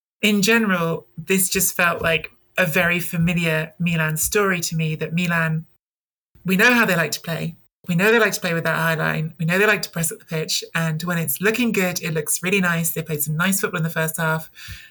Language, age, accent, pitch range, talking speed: English, 20-39, British, 165-200 Hz, 240 wpm